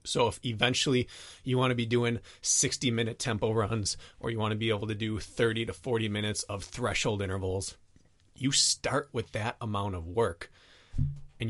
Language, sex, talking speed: English, male, 185 wpm